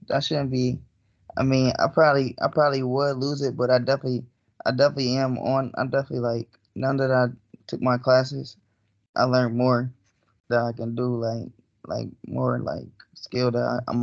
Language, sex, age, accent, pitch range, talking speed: English, male, 20-39, American, 120-130 Hz, 180 wpm